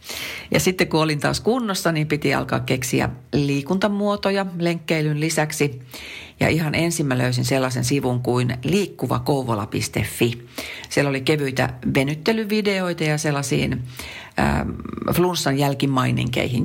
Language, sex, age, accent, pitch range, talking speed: Finnish, female, 40-59, native, 125-185 Hz, 110 wpm